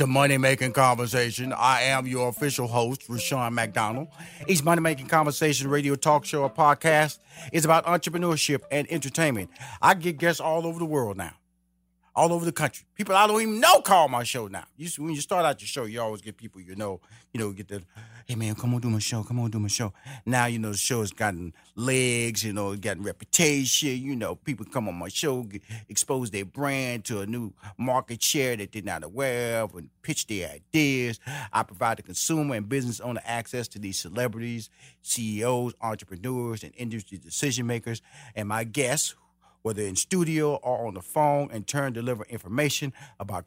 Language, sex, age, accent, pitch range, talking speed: English, male, 40-59, American, 105-140 Hz, 195 wpm